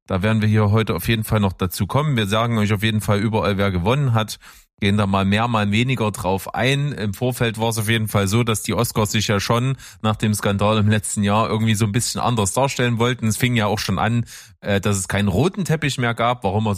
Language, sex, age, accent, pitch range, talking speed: German, male, 20-39, German, 105-125 Hz, 255 wpm